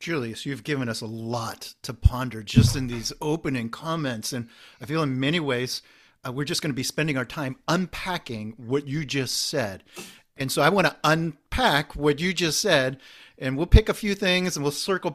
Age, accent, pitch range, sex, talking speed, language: 50-69, American, 120-155 Hz, male, 205 wpm, English